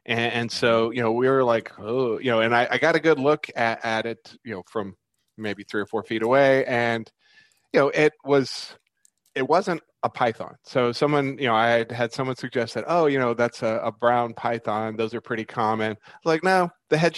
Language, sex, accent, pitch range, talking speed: English, male, American, 115-140 Hz, 225 wpm